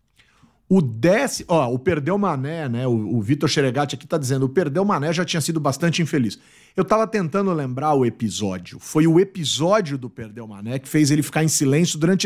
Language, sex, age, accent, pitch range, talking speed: Portuguese, male, 40-59, Brazilian, 125-180 Hz, 195 wpm